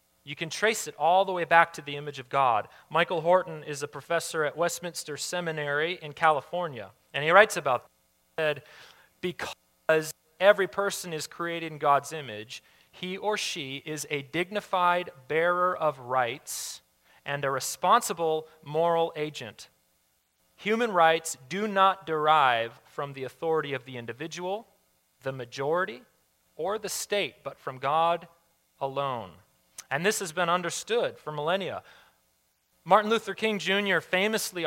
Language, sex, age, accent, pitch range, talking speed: English, male, 30-49, American, 135-180 Hz, 140 wpm